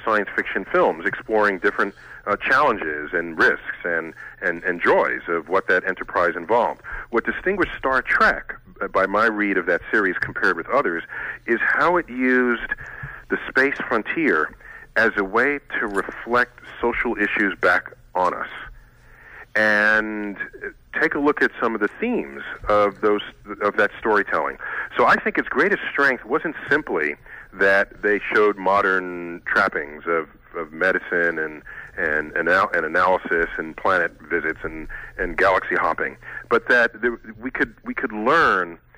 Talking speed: 150 wpm